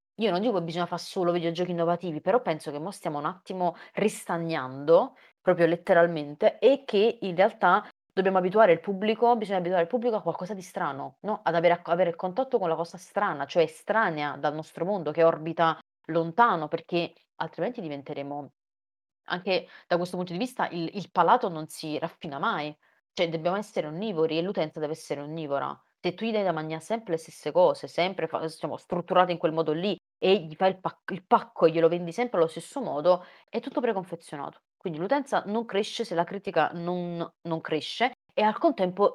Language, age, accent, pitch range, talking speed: Italian, 30-49, native, 160-200 Hz, 190 wpm